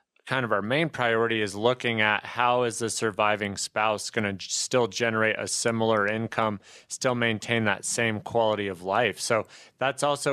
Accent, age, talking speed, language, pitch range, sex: American, 30-49, 175 wpm, English, 110-125 Hz, male